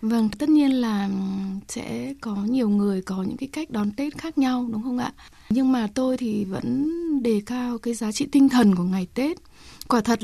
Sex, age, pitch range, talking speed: female, 20-39, 215-270 Hz, 210 wpm